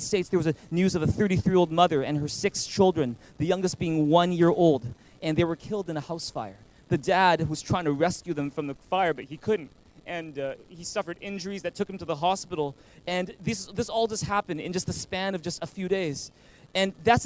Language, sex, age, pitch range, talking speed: English, male, 30-49, 160-205 Hz, 245 wpm